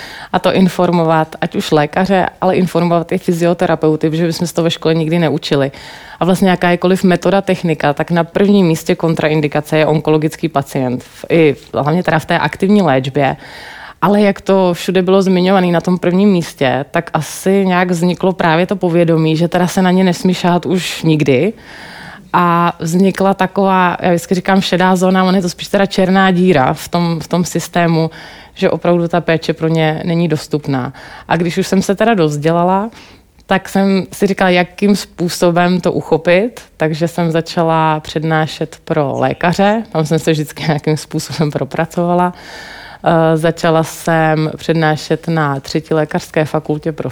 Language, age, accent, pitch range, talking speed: Czech, 30-49, native, 160-185 Hz, 165 wpm